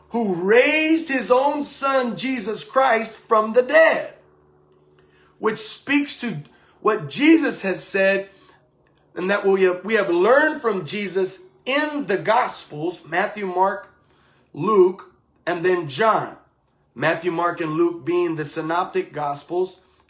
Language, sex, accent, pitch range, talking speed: English, male, American, 165-215 Hz, 120 wpm